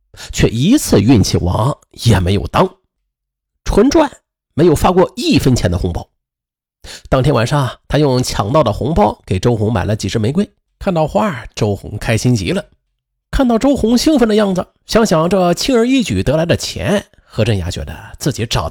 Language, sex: Chinese, male